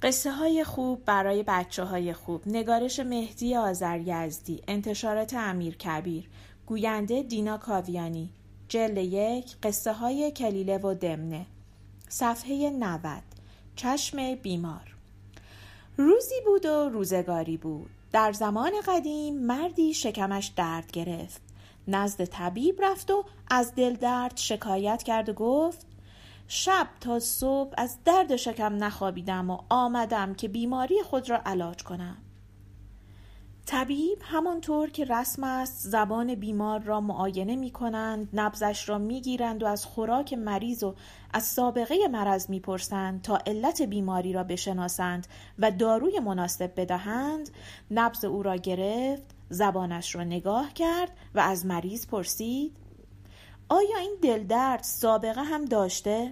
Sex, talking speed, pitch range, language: female, 125 wpm, 180-250 Hz, Persian